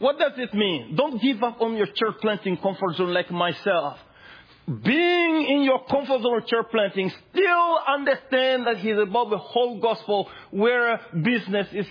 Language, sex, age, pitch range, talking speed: English, male, 50-69, 185-240 Hz, 165 wpm